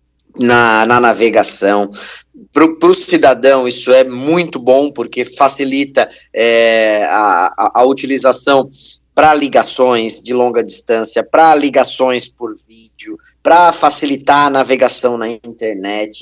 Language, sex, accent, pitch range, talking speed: Portuguese, male, Brazilian, 125-165 Hz, 115 wpm